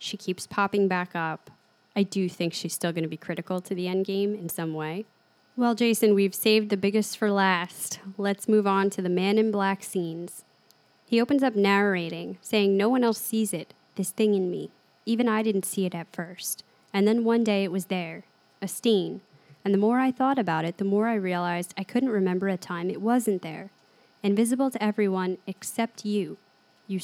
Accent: American